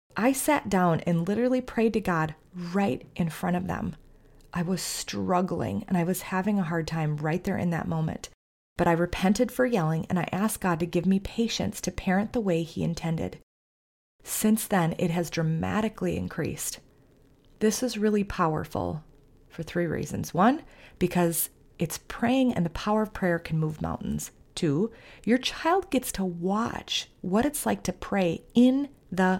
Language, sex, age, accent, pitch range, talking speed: English, female, 30-49, American, 170-215 Hz, 175 wpm